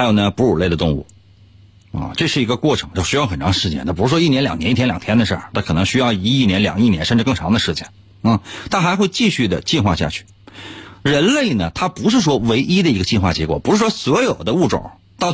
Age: 30-49